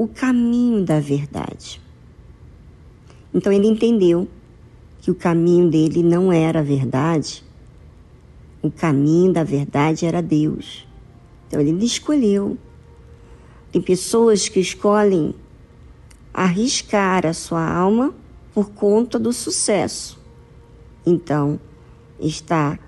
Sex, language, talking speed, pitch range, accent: male, Portuguese, 100 wpm, 170-225 Hz, Brazilian